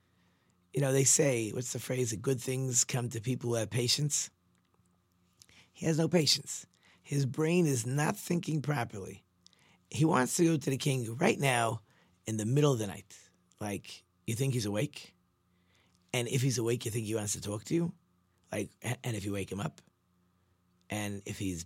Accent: American